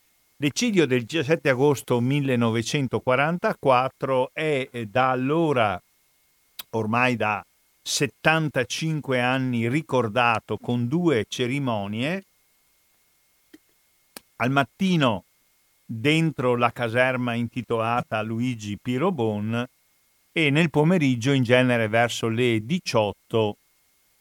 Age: 50-69